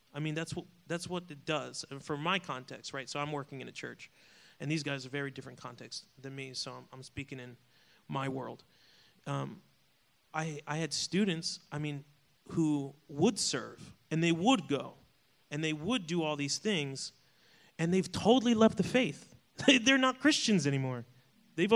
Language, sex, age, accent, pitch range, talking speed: English, male, 30-49, American, 145-195 Hz, 190 wpm